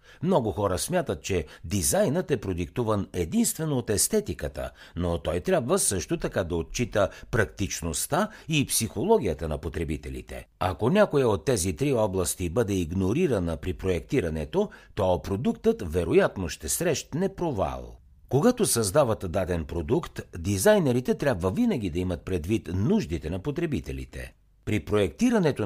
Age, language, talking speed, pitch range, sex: 60-79, Bulgarian, 125 wpm, 85-135 Hz, male